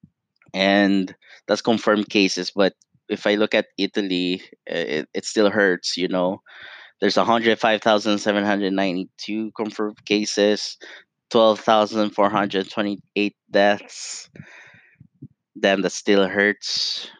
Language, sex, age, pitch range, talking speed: English, male, 20-39, 95-115 Hz, 90 wpm